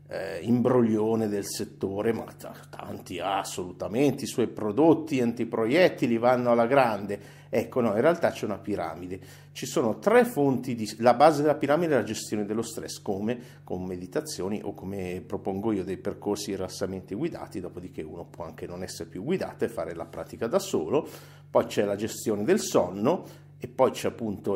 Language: Italian